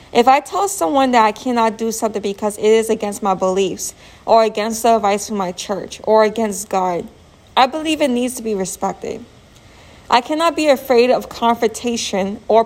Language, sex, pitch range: English, female, 205-245 Hz